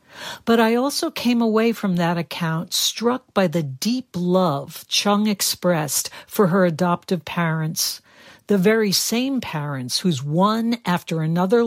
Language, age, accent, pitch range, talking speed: English, 60-79, American, 165-210 Hz, 140 wpm